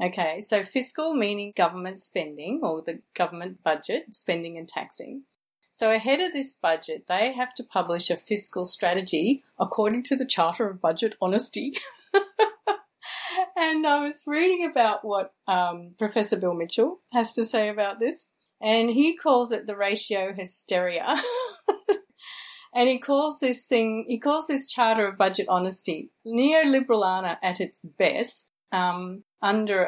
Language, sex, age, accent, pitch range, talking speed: English, female, 40-59, Australian, 185-270 Hz, 145 wpm